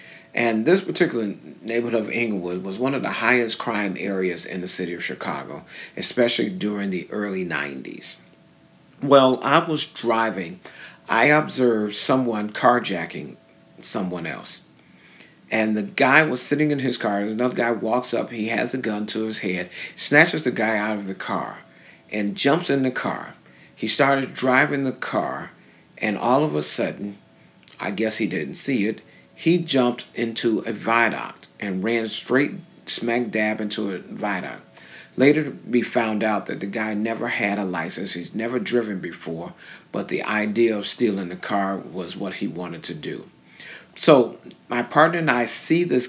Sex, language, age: male, English, 50-69